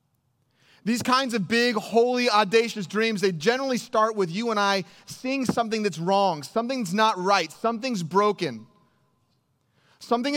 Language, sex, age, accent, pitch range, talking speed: English, male, 30-49, American, 185-230 Hz, 140 wpm